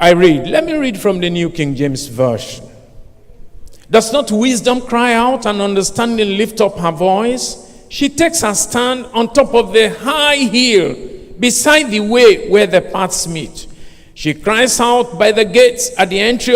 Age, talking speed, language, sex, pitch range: 50-69, 175 wpm, English, male, 165-250 Hz